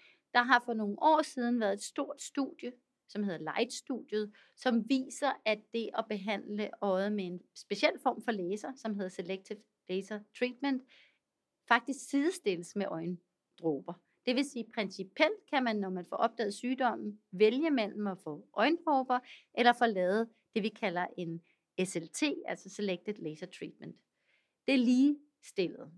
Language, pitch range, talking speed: Danish, 200-250 Hz, 155 wpm